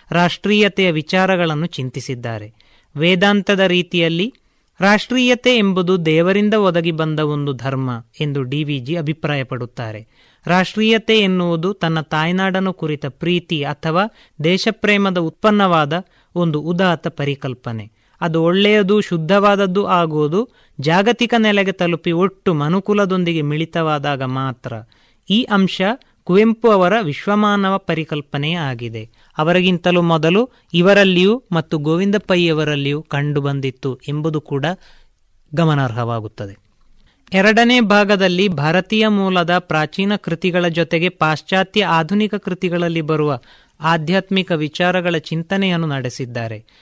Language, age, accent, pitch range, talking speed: Kannada, 30-49, native, 150-195 Hz, 85 wpm